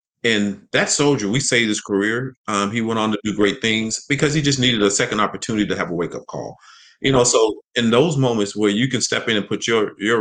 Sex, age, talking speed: male, 30-49, 255 wpm